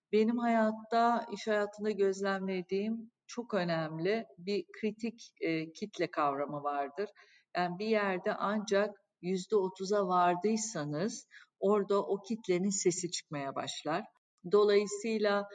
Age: 50-69